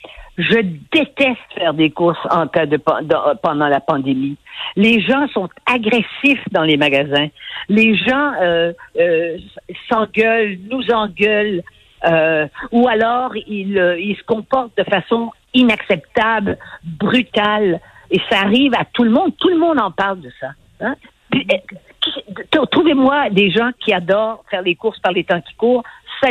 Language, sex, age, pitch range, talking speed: French, female, 50-69, 185-250 Hz, 155 wpm